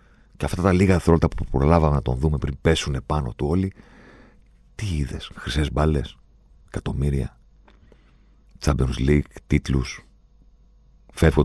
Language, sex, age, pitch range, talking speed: Greek, male, 50-69, 65-80 Hz, 125 wpm